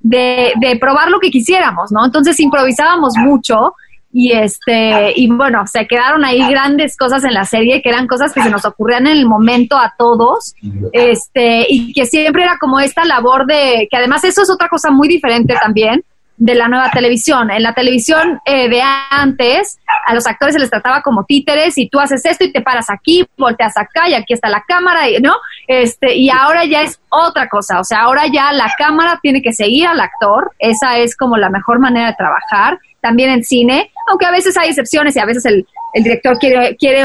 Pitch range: 235-300 Hz